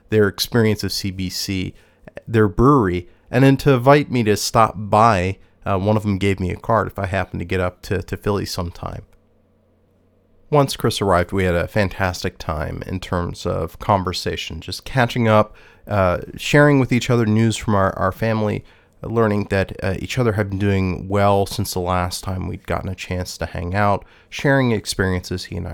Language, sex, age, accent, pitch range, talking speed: English, male, 30-49, American, 90-110 Hz, 190 wpm